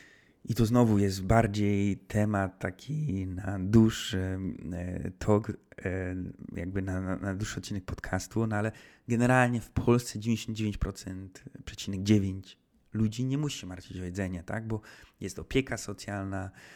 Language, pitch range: Polish, 95-110 Hz